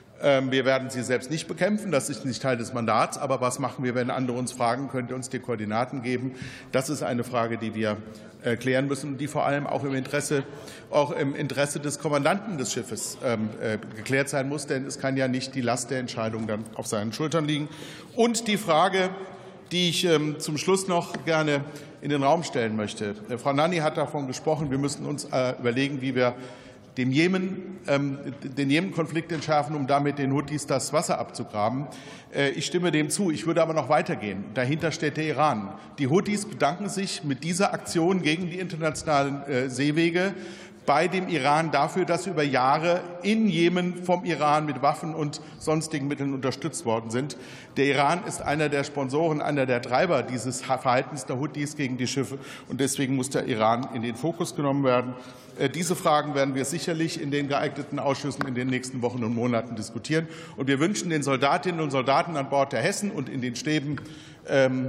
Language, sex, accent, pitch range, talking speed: German, male, German, 130-160 Hz, 185 wpm